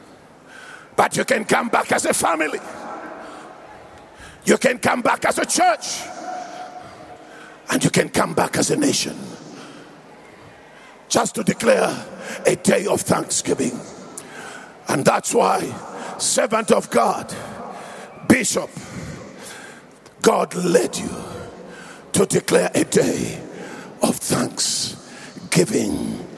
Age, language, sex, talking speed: 50-69, English, male, 105 wpm